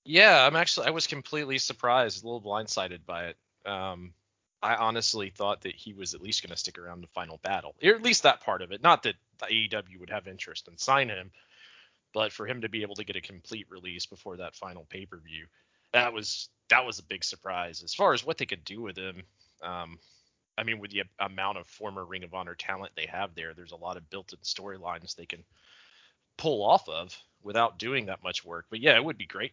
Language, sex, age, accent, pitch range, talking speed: English, male, 30-49, American, 90-110 Hz, 230 wpm